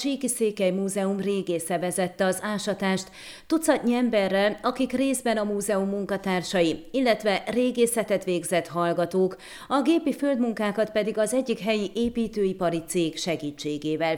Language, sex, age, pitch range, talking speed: Hungarian, female, 30-49, 180-235 Hz, 120 wpm